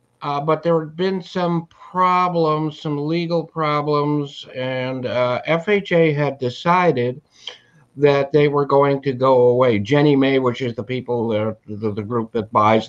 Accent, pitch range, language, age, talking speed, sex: American, 125-150 Hz, English, 60-79, 160 wpm, male